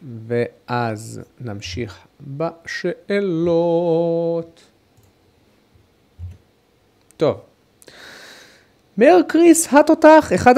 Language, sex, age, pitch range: Hebrew, male, 30-49, 120-180 Hz